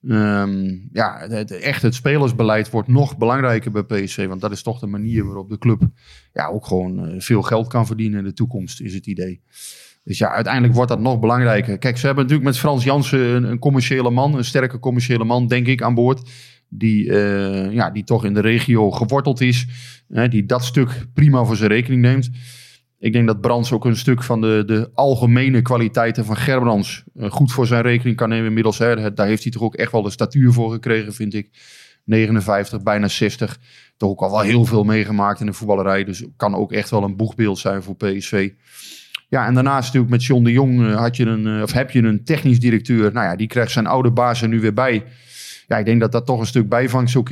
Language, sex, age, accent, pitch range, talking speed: Dutch, male, 20-39, Dutch, 105-125 Hz, 210 wpm